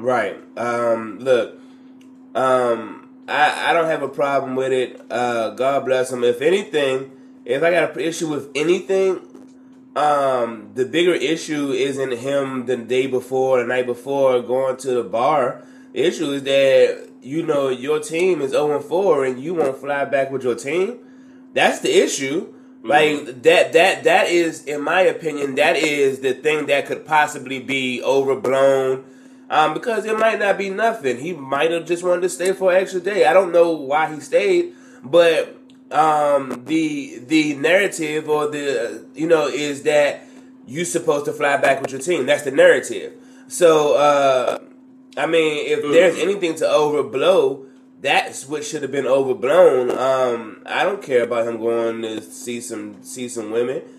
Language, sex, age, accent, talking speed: English, male, 20-39, American, 170 wpm